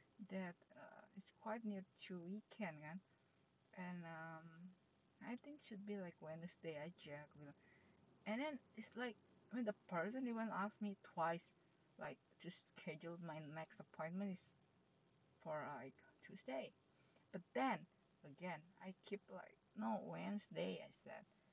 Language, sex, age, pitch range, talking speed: English, female, 50-69, 165-210 Hz, 155 wpm